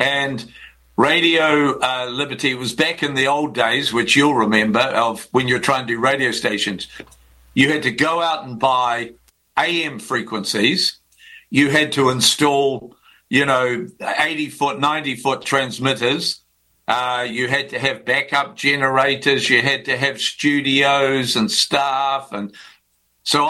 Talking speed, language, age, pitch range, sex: 145 wpm, English, 50-69, 115-145 Hz, male